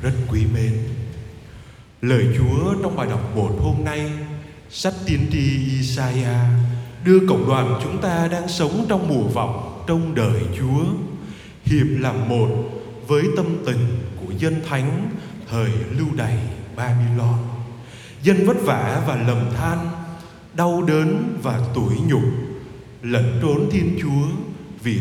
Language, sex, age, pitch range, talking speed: Vietnamese, male, 20-39, 120-180 Hz, 135 wpm